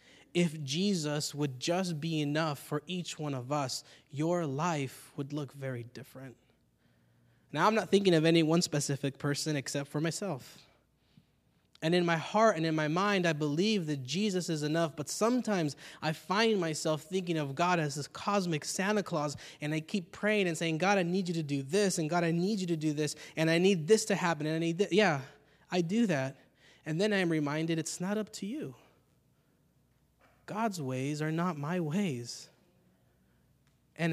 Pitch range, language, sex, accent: 145-185 Hz, English, male, American